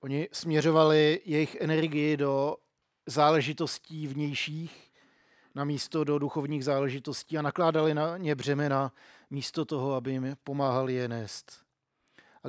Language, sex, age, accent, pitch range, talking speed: Czech, male, 50-69, native, 135-155 Hz, 120 wpm